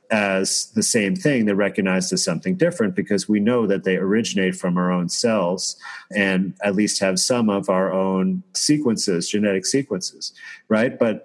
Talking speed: 170 wpm